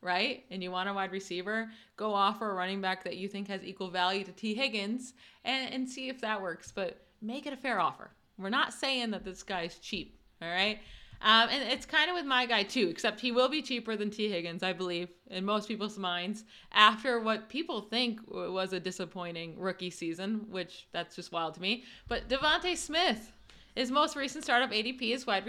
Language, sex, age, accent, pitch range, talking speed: English, female, 30-49, American, 190-250 Hz, 210 wpm